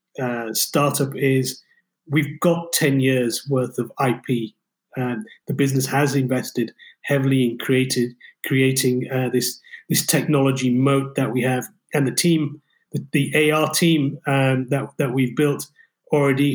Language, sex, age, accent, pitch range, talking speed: English, male, 30-49, British, 125-145 Hz, 145 wpm